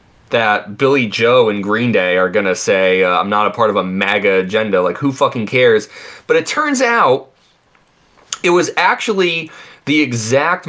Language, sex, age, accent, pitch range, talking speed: English, male, 20-39, American, 115-155 Hz, 175 wpm